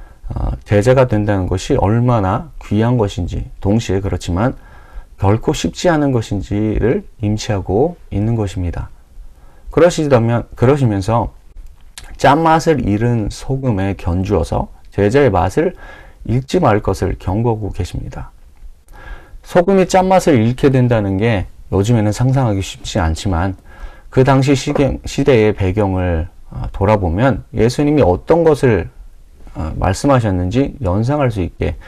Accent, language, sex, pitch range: native, Korean, male, 90-130 Hz